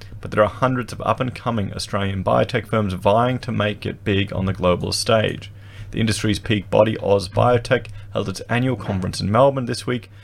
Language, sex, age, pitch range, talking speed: English, male, 30-49, 100-115 Hz, 190 wpm